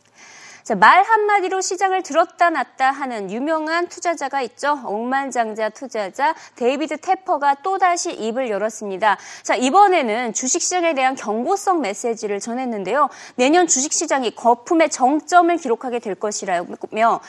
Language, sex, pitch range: Korean, female, 225-340 Hz